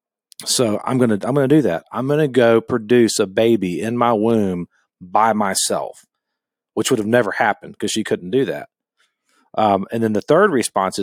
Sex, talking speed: male, 200 wpm